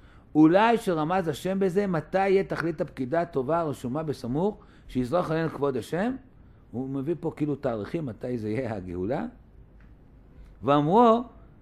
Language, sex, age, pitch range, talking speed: Hebrew, male, 60-79, 135-190 Hz, 125 wpm